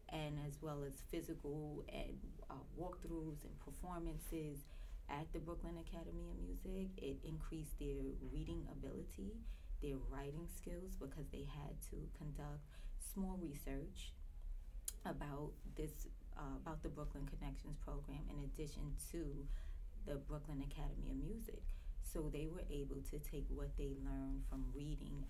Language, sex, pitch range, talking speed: English, female, 135-155 Hz, 135 wpm